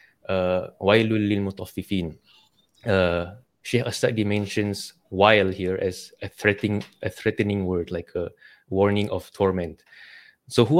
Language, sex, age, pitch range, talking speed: English, male, 20-39, 95-110 Hz, 110 wpm